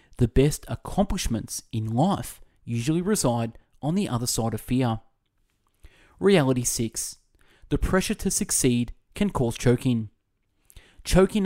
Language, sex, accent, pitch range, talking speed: English, male, Australian, 115-150 Hz, 120 wpm